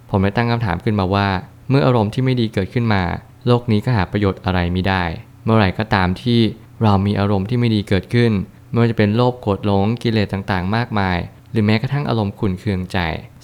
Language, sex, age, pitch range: Thai, male, 20-39, 95-120 Hz